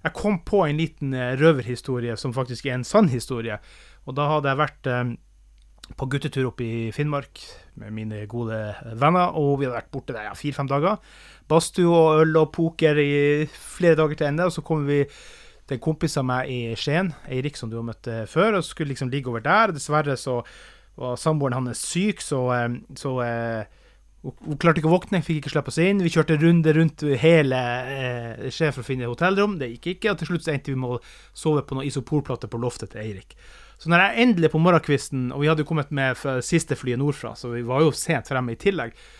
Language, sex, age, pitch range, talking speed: English, male, 30-49, 125-160 Hz, 205 wpm